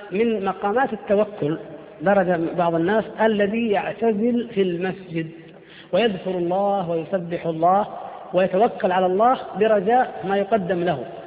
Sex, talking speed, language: female, 110 wpm, Arabic